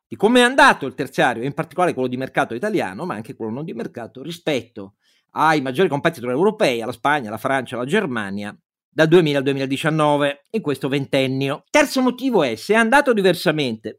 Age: 50-69